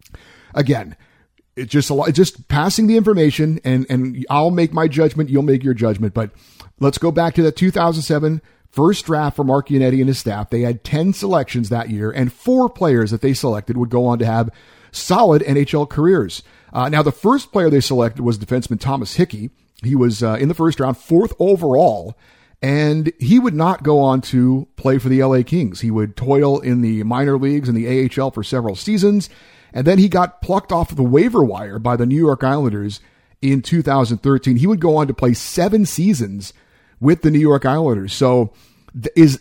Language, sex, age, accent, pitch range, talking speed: English, male, 50-69, American, 120-160 Hz, 200 wpm